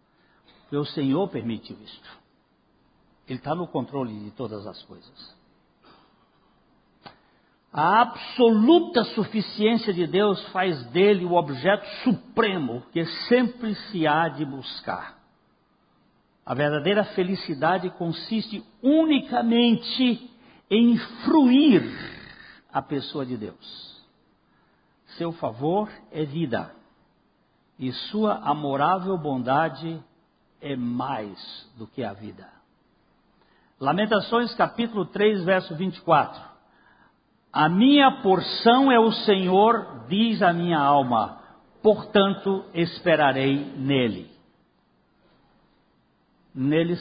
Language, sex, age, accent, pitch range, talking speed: Portuguese, male, 60-79, Brazilian, 145-225 Hz, 95 wpm